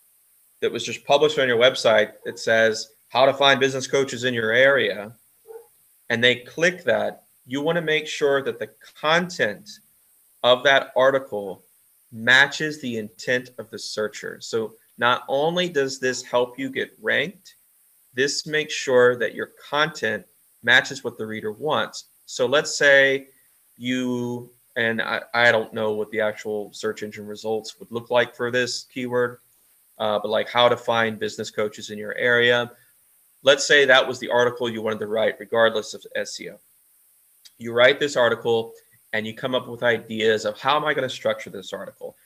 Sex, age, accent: male, 30-49, American